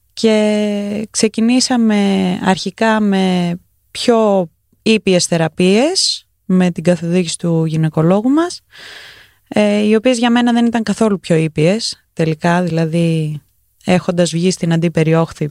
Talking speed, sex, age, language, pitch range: 110 wpm, female, 20-39, Greek, 165-220 Hz